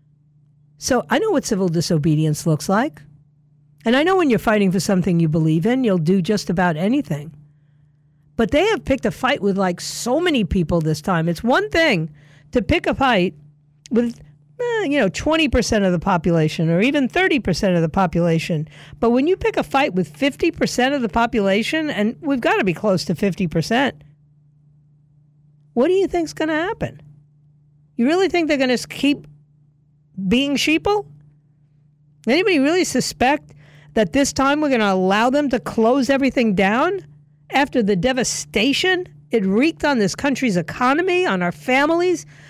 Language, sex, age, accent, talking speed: English, female, 50-69, American, 165 wpm